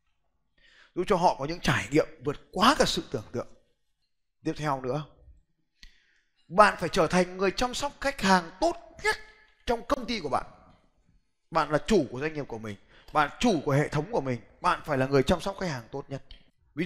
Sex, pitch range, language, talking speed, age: male, 125-165 Hz, Vietnamese, 205 wpm, 20-39